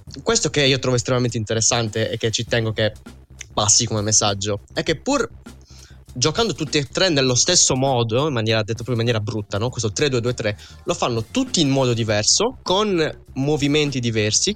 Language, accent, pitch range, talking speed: Italian, native, 105-130 Hz, 175 wpm